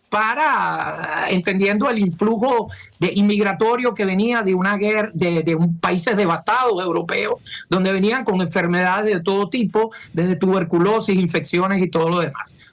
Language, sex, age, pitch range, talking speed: Spanish, male, 50-69, 190-245 Hz, 145 wpm